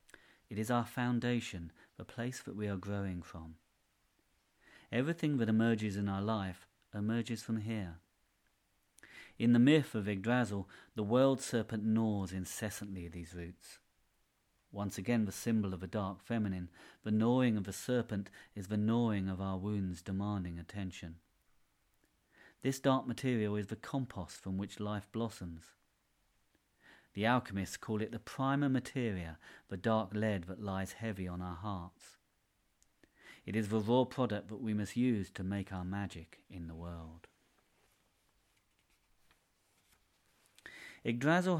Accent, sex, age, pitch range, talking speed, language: British, male, 40-59, 95-115 Hz, 140 wpm, English